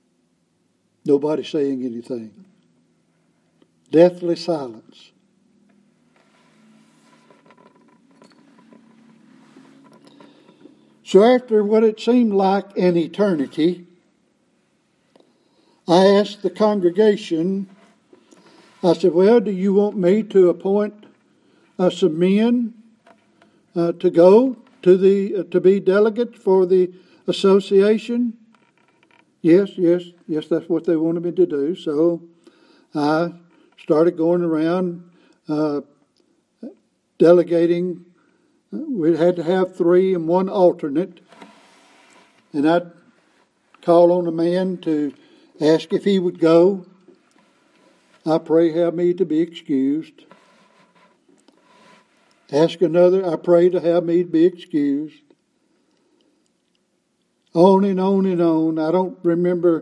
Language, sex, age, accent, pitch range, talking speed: English, male, 60-79, American, 170-220 Hz, 100 wpm